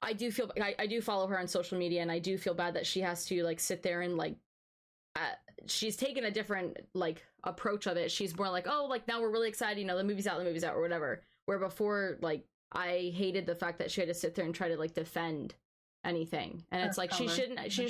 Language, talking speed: English, 260 wpm